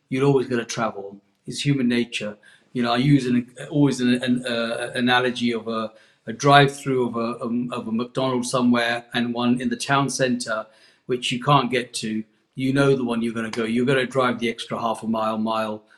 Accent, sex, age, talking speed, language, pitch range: British, male, 40-59, 220 wpm, English, 120-135 Hz